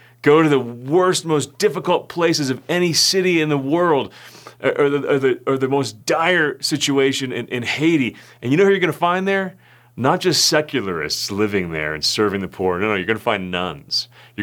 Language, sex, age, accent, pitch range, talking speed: English, male, 30-49, American, 120-165 Hz, 200 wpm